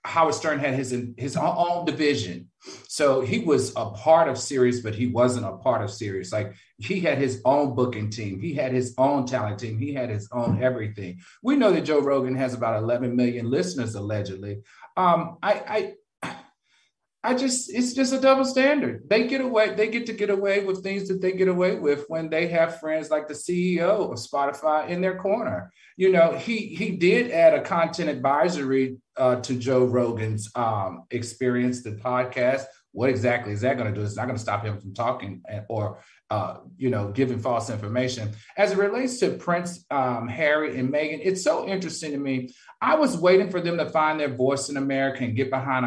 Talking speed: 200 wpm